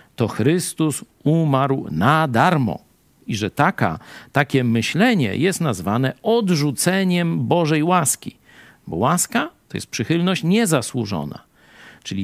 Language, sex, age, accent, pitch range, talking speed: Polish, male, 50-69, native, 115-175 Hz, 105 wpm